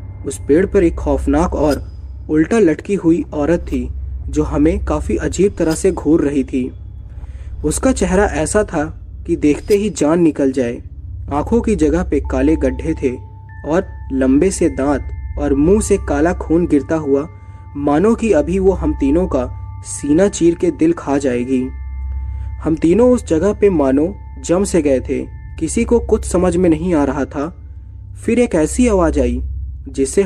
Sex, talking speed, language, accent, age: male, 170 wpm, Hindi, native, 20-39